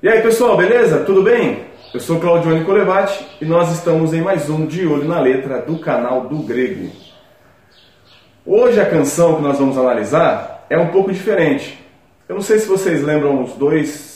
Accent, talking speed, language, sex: Brazilian, 180 wpm, Portuguese, male